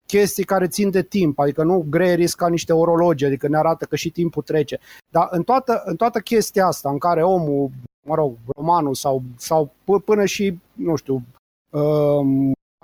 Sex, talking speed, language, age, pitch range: male, 180 wpm, Romanian, 30-49, 155-195 Hz